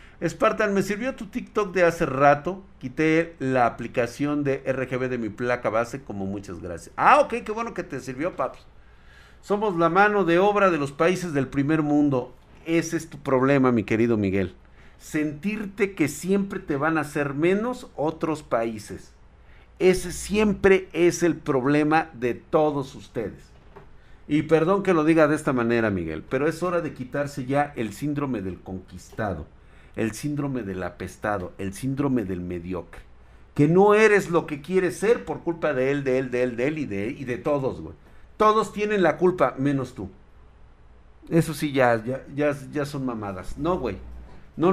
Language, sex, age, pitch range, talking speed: Spanish, male, 50-69, 115-175 Hz, 175 wpm